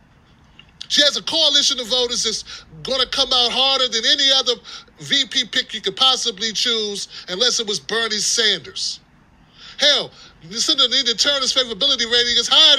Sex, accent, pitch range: male, American, 195-245 Hz